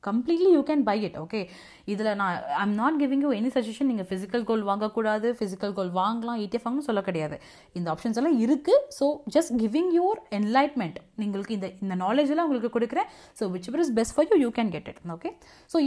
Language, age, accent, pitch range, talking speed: Tamil, 30-49, native, 200-280 Hz, 180 wpm